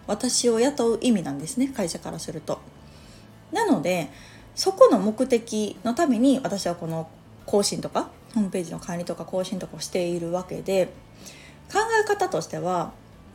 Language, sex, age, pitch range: Japanese, female, 20-39, 180-265 Hz